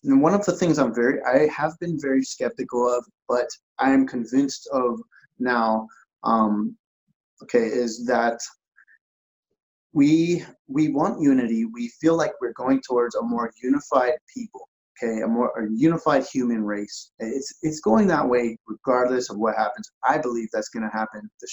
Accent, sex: American, male